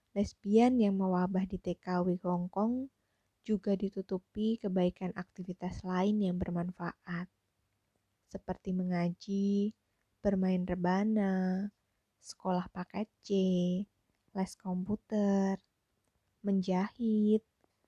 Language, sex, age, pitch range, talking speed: Indonesian, female, 20-39, 170-200 Hz, 75 wpm